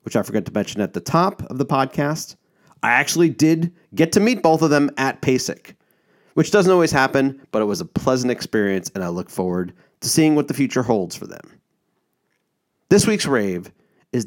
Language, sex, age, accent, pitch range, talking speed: English, male, 30-49, American, 110-150 Hz, 200 wpm